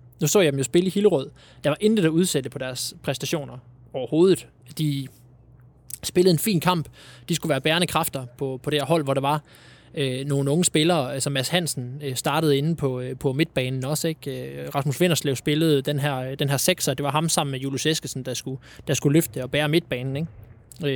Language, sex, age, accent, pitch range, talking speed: Danish, male, 20-39, native, 130-160 Hz, 210 wpm